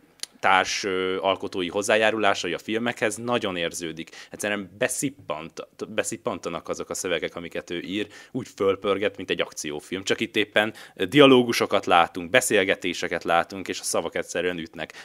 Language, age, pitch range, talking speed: Hungarian, 20-39, 90-115 Hz, 130 wpm